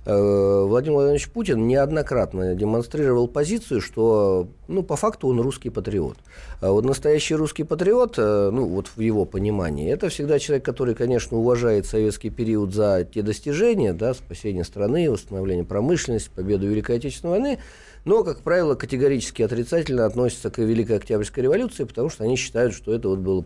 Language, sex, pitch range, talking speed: Russian, male, 100-130 Hz, 155 wpm